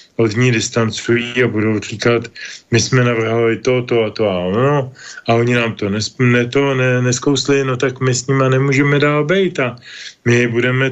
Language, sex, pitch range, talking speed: Slovak, male, 110-130 Hz, 185 wpm